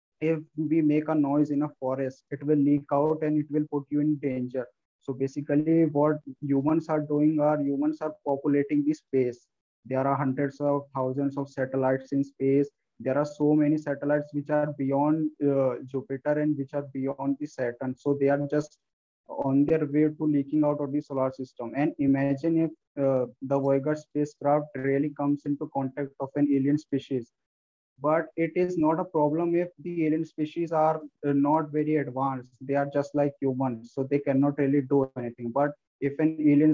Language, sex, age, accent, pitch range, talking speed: English, male, 20-39, Indian, 135-150 Hz, 185 wpm